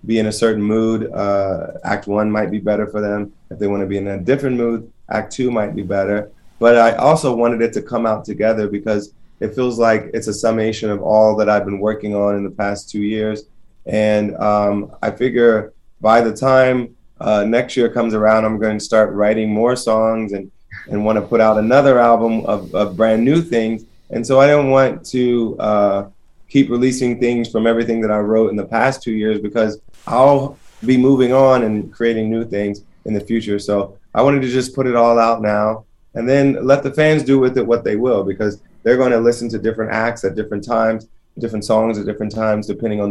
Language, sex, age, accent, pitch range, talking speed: English, male, 20-39, American, 105-115 Hz, 220 wpm